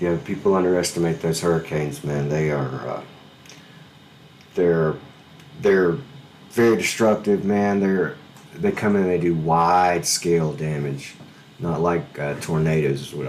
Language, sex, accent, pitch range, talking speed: English, male, American, 75-85 Hz, 115 wpm